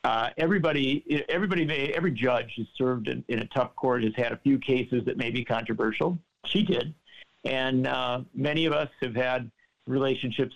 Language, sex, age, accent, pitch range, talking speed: English, male, 50-69, American, 120-150 Hz, 180 wpm